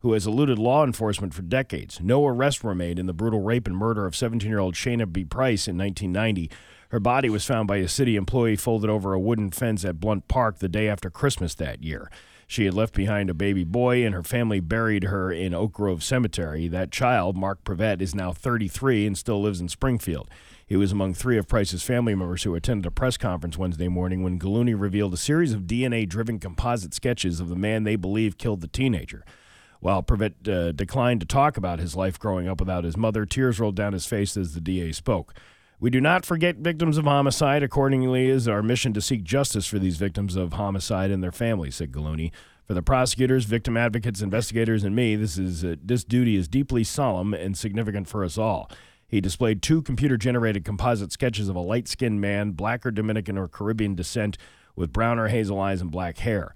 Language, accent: English, American